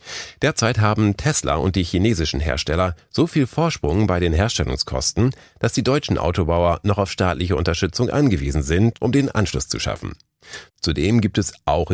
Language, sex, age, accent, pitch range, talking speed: German, male, 40-59, German, 85-115 Hz, 160 wpm